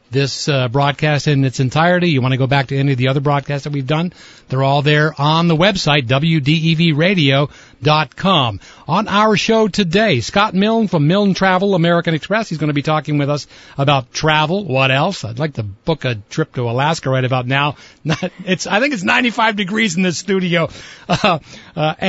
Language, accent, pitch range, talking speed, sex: English, American, 140-185 Hz, 195 wpm, male